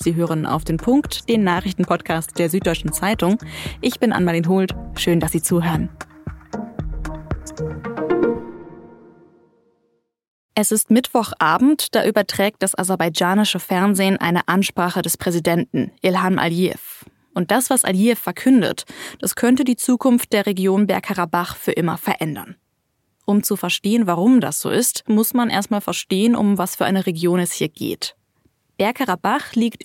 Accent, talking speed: German, 135 wpm